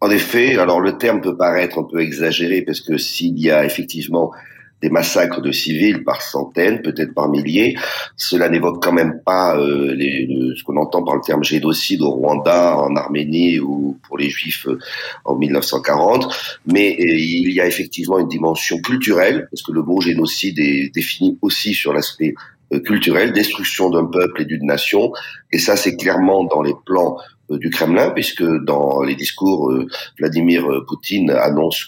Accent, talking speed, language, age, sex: French, 170 wpm, French, 40-59, male